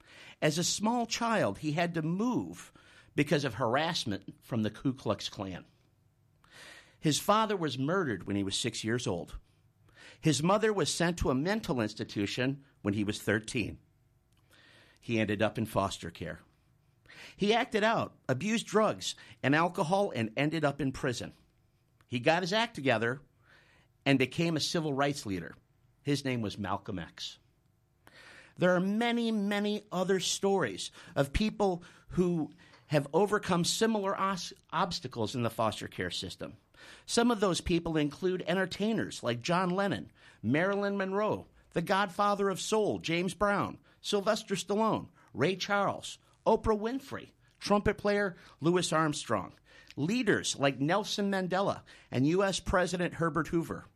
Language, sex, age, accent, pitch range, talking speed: English, male, 50-69, American, 125-195 Hz, 140 wpm